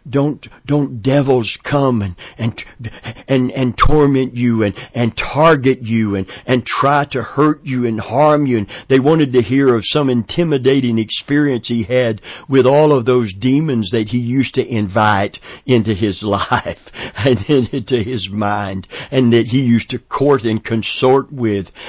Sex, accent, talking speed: male, American, 165 wpm